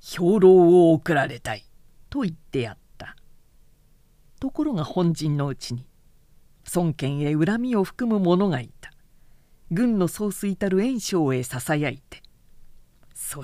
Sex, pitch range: female, 140-185 Hz